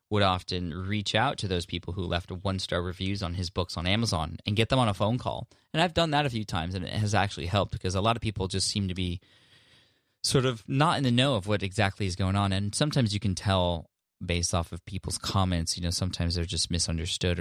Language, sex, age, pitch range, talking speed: English, male, 20-39, 85-110 Hz, 250 wpm